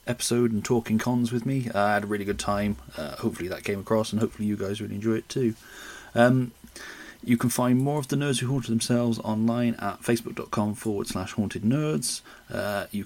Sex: male